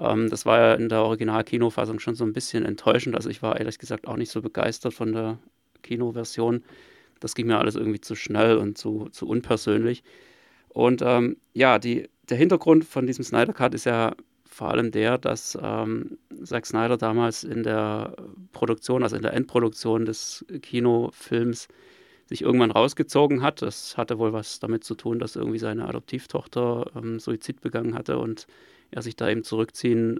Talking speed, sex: 175 wpm, male